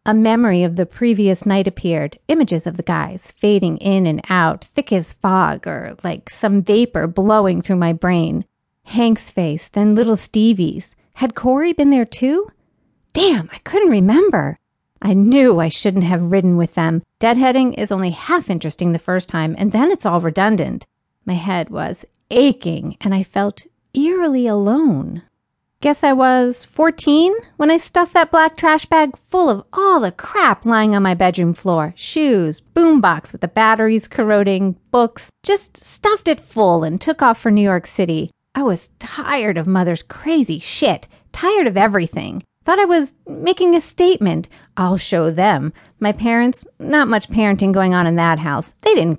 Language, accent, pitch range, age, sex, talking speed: English, American, 180-280 Hz, 40-59, female, 170 wpm